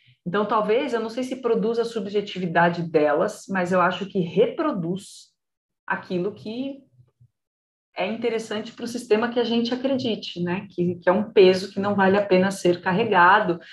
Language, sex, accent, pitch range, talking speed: Portuguese, female, Brazilian, 175-255 Hz, 170 wpm